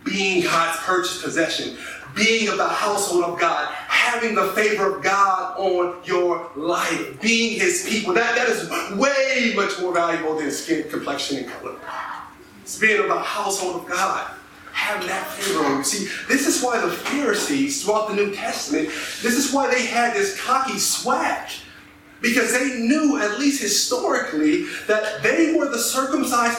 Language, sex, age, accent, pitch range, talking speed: English, male, 30-49, American, 185-280 Hz, 165 wpm